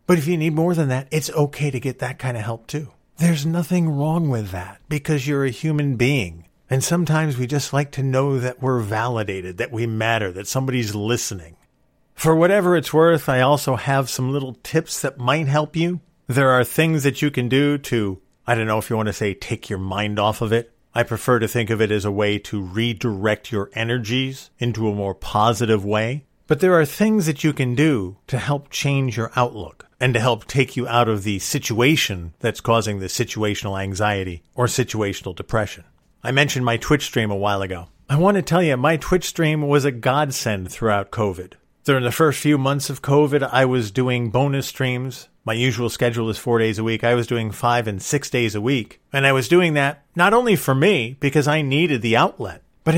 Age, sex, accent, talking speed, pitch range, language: 50-69, male, American, 215 wpm, 110-150 Hz, English